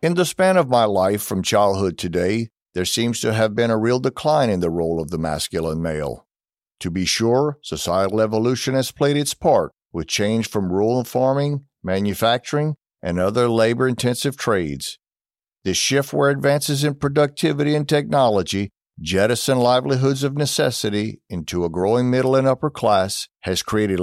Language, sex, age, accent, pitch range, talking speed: English, male, 50-69, American, 95-135 Hz, 160 wpm